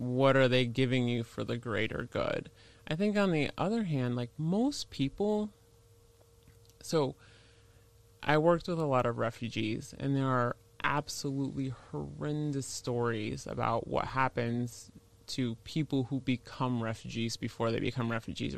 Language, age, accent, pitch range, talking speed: English, 20-39, American, 115-145 Hz, 140 wpm